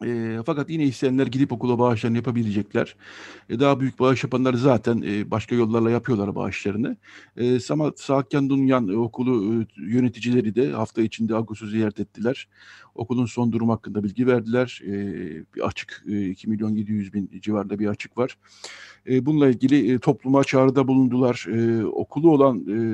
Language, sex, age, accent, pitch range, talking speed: Turkish, male, 60-79, native, 110-130 Hz, 160 wpm